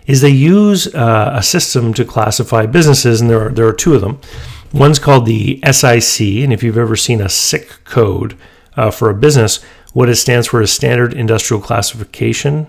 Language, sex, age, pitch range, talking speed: English, male, 30-49, 110-140 Hz, 190 wpm